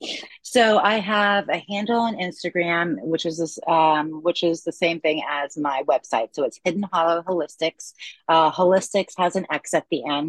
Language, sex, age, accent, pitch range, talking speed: English, female, 30-49, American, 145-175 Hz, 185 wpm